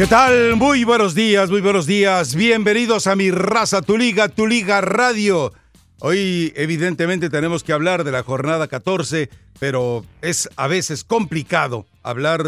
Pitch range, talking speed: 130-170 Hz, 155 wpm